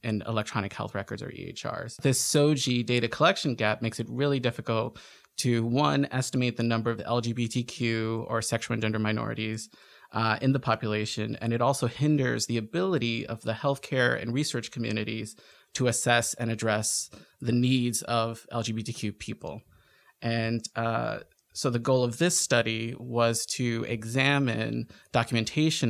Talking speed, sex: 150 wpm, male